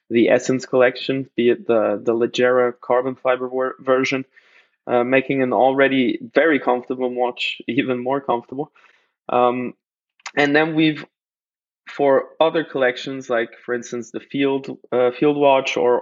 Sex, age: male, 20-39